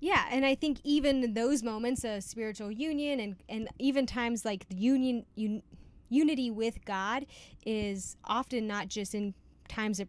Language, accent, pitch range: English, American, 205-255 Hz